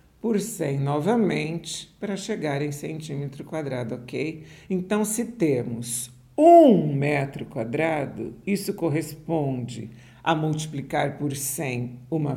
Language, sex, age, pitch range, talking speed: Portuguese, male, 50-69, 130-175 Hz, 105 wpm